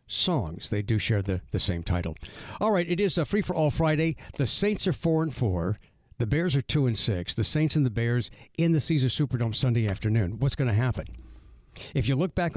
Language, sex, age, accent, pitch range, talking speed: English, male, 60-79, American, 105-150 Hz, 230 wpm